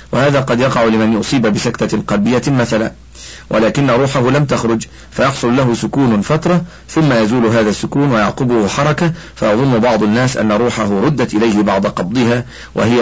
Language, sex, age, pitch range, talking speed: Arabic, male, 50-69, 95-135 Hz, 145 wpm